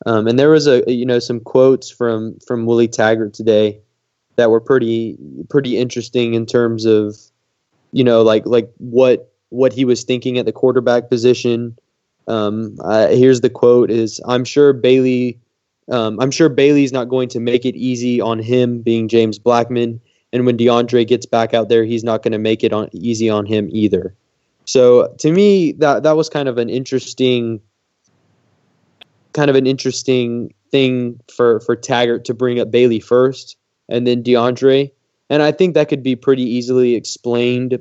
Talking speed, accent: 180 wpm, American